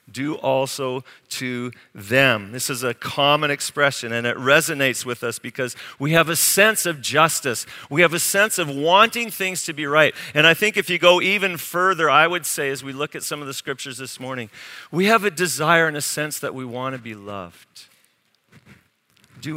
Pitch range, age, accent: 130-165 Hz, 50-69, American